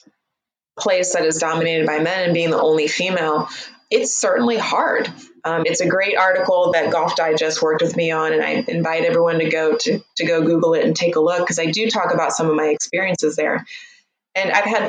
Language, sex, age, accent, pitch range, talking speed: English, female, 20-39, American, 160-195 Hz, 220 wpm